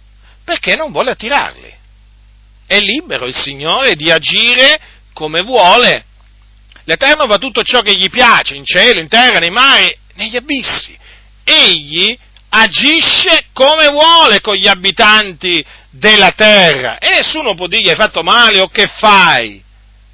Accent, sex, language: native, male, Italian